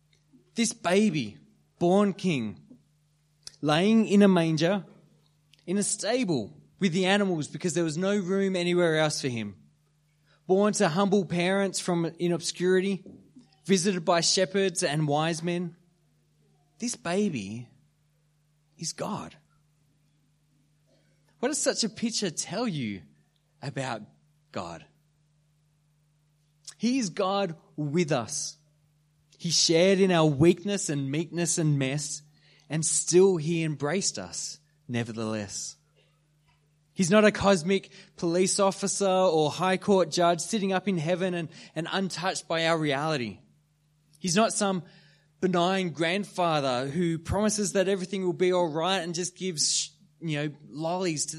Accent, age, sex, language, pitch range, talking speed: Australian, 20-39, male, English, 150-190 Hz, 125 wpm